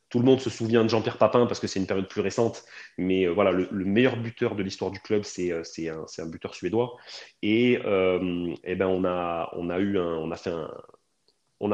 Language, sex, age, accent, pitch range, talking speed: French, male, 30-49, French, 95-115 Hz, 245 wpm